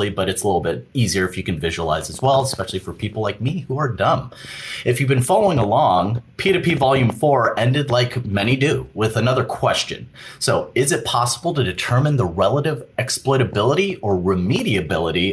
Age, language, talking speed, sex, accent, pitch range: 30-49, English, 180 wpm, male, American, 95-130 Hz